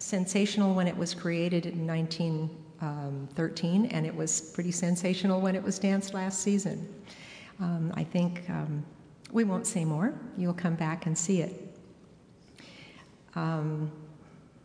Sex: female